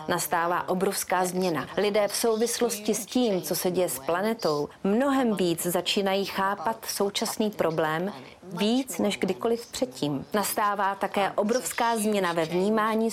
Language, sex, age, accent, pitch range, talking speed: Czech, female, 30-49, native, 180-215 Hz, 135 wpm